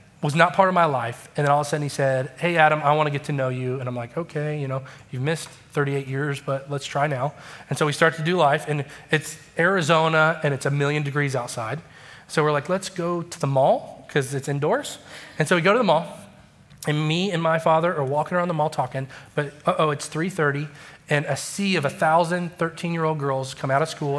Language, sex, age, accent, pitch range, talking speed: English, male, 30-49, American, 145-180 Hz, 250 wpm